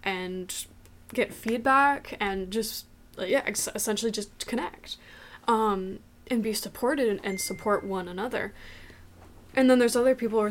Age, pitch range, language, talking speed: 10-29, 195-225 Hz, English, 130 wpm